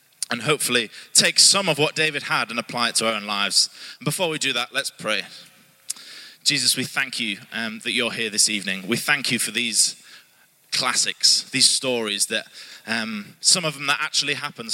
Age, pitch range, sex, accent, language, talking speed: 20-39, 125-170 Hz, male, British, English, 195 wpm